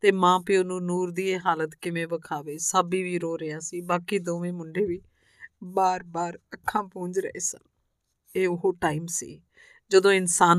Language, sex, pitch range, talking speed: Punjabi, female, 165-185 Hz, 175 wpm